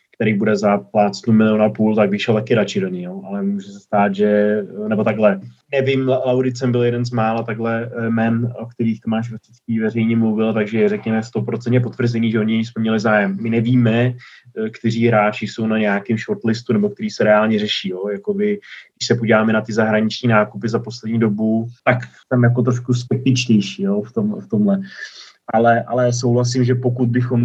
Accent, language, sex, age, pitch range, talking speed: native, Czech, male, 20-39, 110-125 Hz, 180 wpm